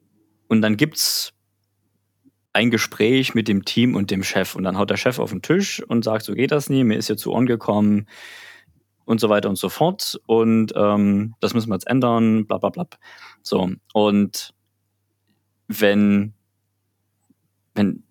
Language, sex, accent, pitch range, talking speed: German, male, German, 100-115 Hz, 170 wpm